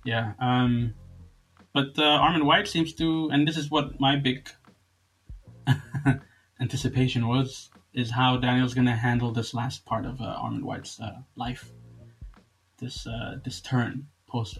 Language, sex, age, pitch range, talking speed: English, male, 20-39, 115-130 Hz, 145 wpm